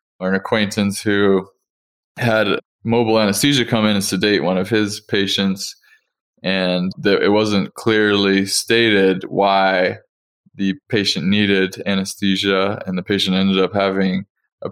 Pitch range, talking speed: 95-110 Hz, 135 wpm